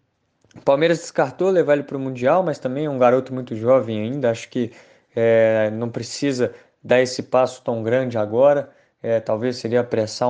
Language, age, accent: Portuguese, 20-39, Brazilian